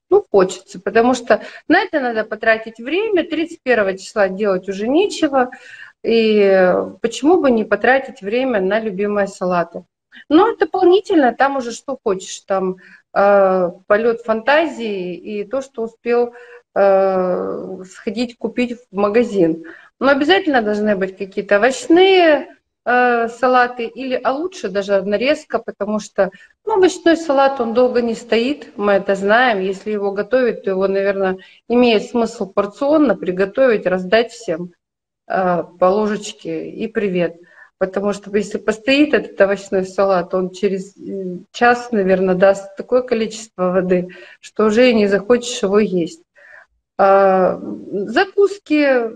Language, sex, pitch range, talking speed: Russian, female, 195-255 Hz, 130 wpm